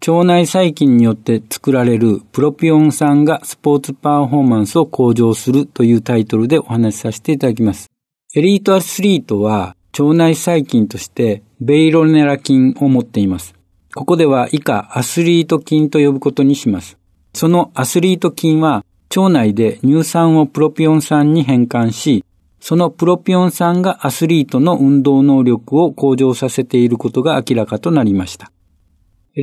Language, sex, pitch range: Japanese, male, 115-160 Hz